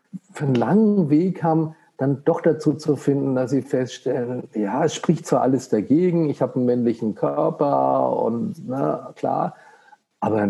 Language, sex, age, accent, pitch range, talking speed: German, male, 50-69, German, 110-140 Hz, 160 wpm